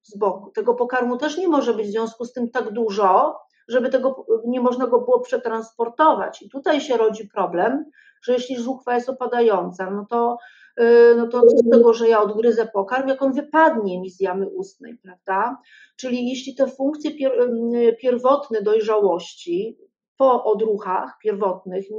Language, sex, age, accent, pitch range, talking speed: Polish, female, 40-59, native, 220-260 Hz, 165 wpm